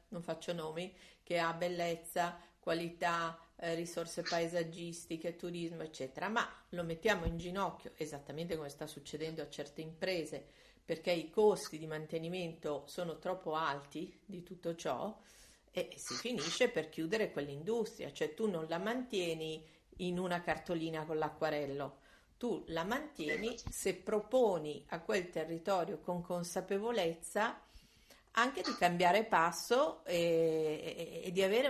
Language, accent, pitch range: Italian, native, 160-180 Hz